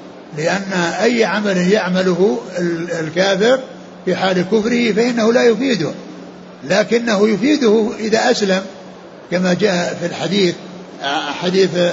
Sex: male